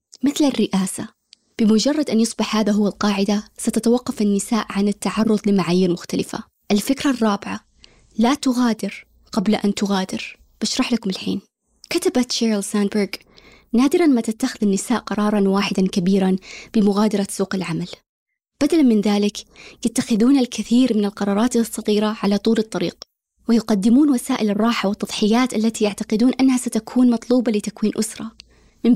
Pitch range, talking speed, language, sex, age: 205-240 Hz, 125 wpm, Arabic, female, 20-39